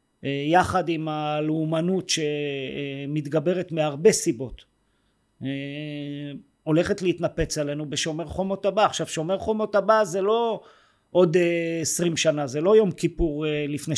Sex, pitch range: male, 150-190 Hz